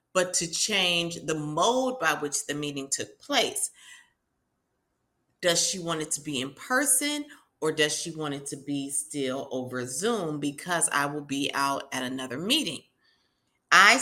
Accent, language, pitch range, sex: American, English, 150-200 Hz, female